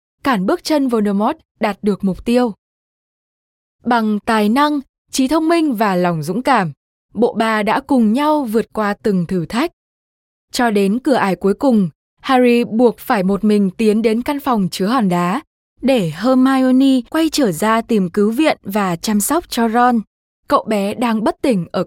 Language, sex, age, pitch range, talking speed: Vietnamese, female, 10-29, 200-260 Hz, 180 wpm